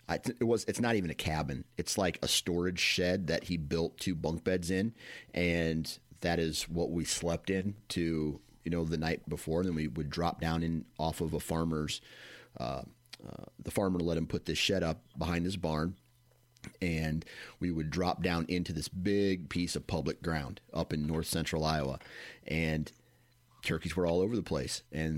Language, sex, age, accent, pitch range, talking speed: English, male, 30-49, American, 80-90 Hz, 200 wpm